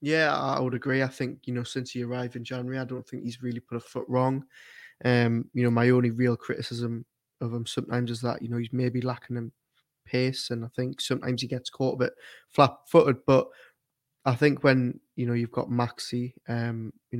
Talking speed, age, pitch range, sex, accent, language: 215 wpm, 20-39, 120-130 Hz, male, British, English